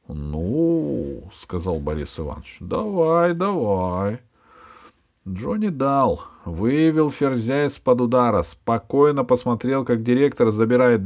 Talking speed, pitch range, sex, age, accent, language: 90 wpm, 85-140 Hz, male, 40-59, native, Russian